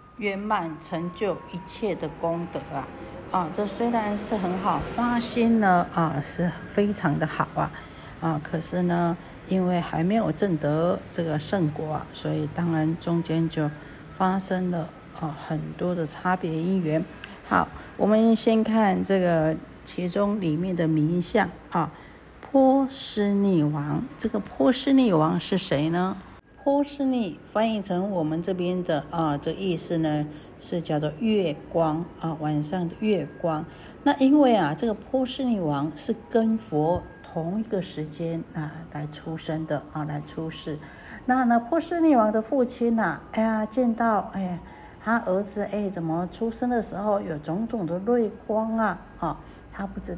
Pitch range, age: 160-215 Hz, 50-69